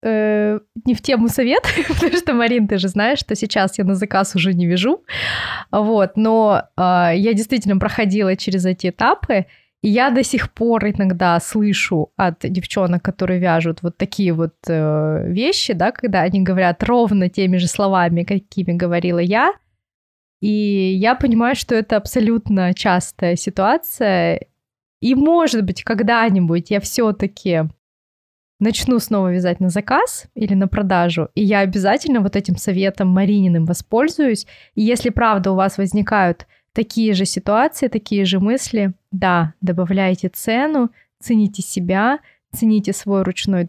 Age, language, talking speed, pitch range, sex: 20-39, Russian, 145 wpm, 185-225 Hz, female